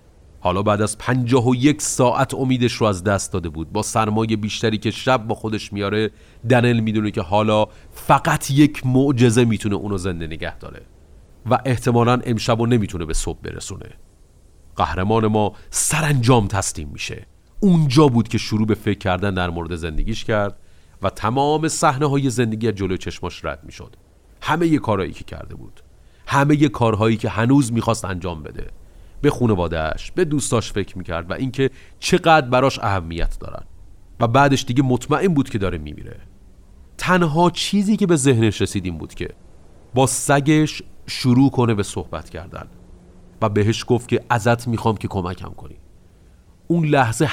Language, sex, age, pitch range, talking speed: Persian, male, 40-59, 95-135 Hz, 160 wpm